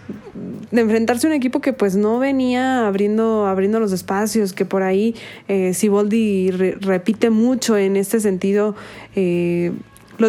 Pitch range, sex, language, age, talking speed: 185-215 Hz, female, Spanish, 20-39, 150 wpm